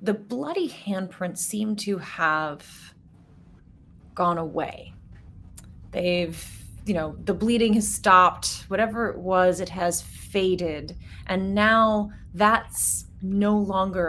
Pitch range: 170-215 Hz